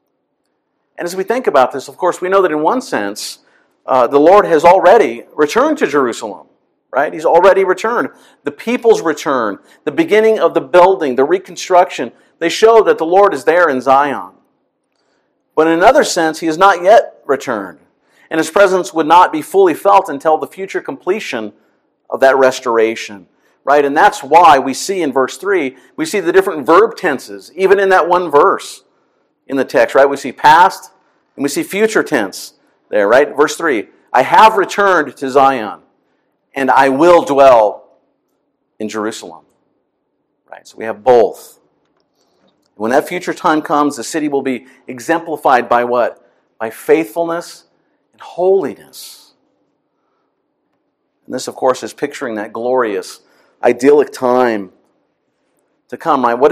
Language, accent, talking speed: English, American, 160 wpm